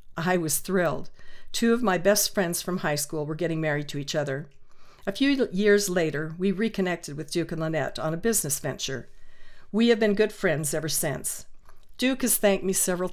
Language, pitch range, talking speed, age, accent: English, 160-195 Hz, 195 wpm, 50-69, American